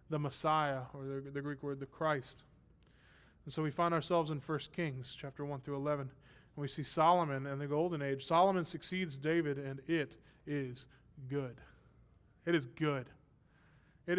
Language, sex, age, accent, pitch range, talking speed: English, male, 20-39, American, 140-200 Hz, 160 wpm